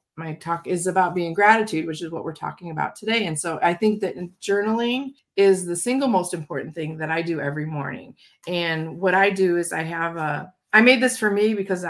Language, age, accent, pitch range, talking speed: English, 30-49, American, 160-195 Hz, 220 wpm